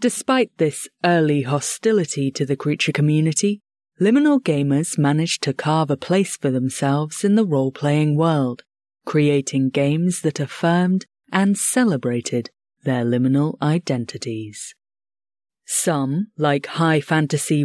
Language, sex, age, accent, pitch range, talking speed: English, female, 30-49, British, 140-175 Hz, 110 wpm